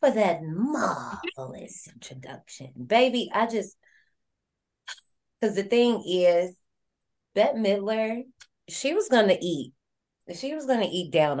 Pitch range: 170-240 Hz